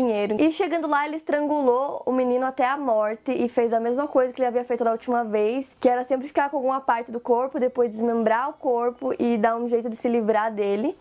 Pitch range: 235-275 Hz